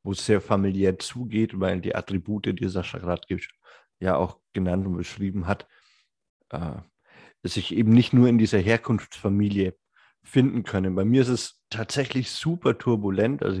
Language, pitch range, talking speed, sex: German, 95-110 Hz, 155 wpm, male